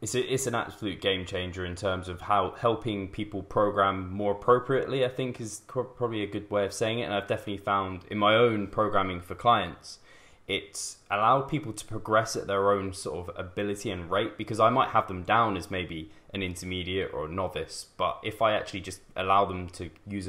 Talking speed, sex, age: 215 wpm, male, 10-29